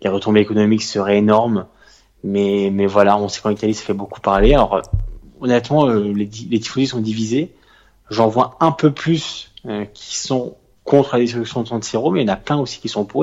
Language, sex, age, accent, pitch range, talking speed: French, male, 20-39, French, 100-115 Hz, 215 wpm